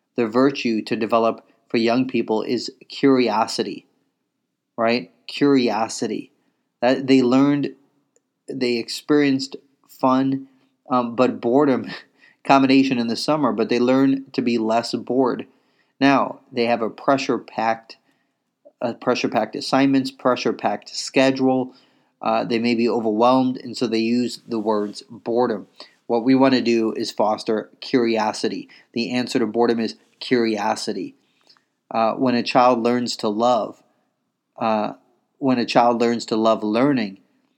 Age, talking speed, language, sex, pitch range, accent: 30-49, 135 wpm, English, male, 115-130 Hz, American